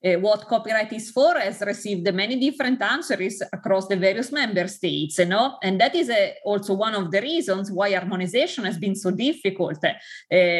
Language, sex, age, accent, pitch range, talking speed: Danish, female, 20-39, Italian, 190-235 Hz, 185 wpm